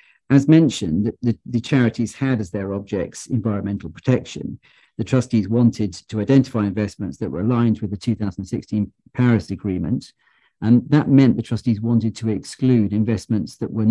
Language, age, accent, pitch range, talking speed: English, 50-69, British, 105-125 Hz, 155 wpm